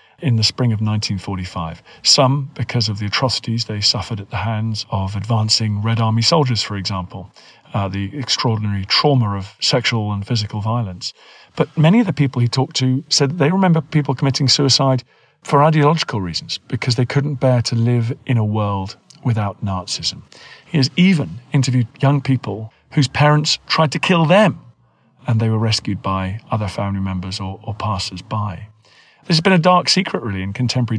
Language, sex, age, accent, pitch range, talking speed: English, male, 40-59, British, 100-135 Hz, 175 wpm